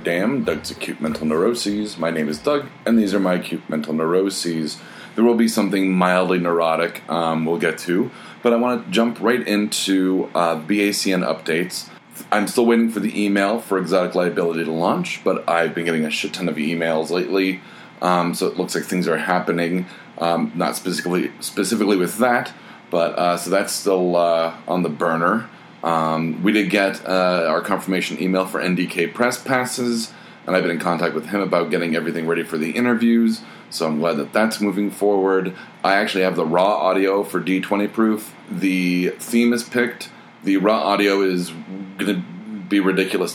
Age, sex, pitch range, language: 30-49, male, 85-100 Hz, English